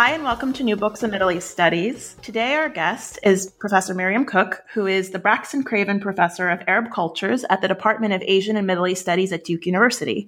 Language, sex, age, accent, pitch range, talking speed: English, female, 30-49, American, 180-225 Hz, 220 wpm